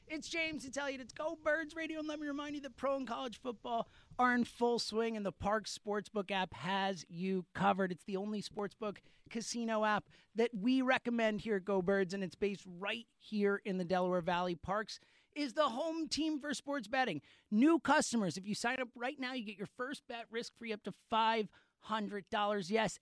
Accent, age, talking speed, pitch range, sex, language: American, 30-49, 205 wpm, 205-275 Hz, male, English